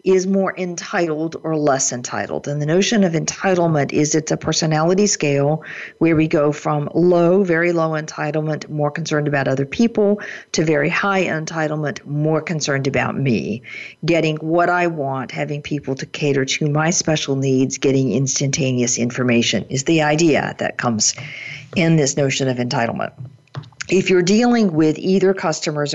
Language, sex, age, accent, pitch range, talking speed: English, female, 50-69, American, 135-170 Hz, 155 wpm